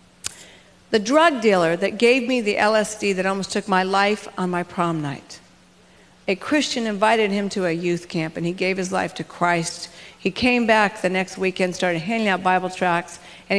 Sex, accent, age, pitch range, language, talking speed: female, American, 50-69, 180-225 Hz, English, 195 wpm